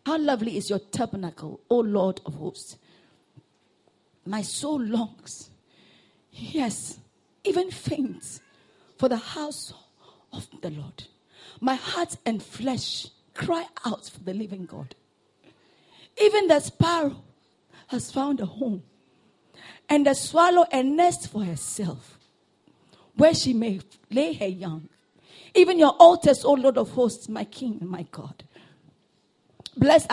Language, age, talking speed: English, 40-59, 125 wpm